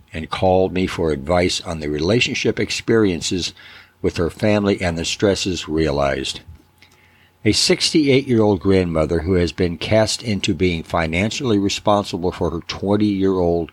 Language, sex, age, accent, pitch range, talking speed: English, male, 60-79, American, 85-105 Hz, 130 wpm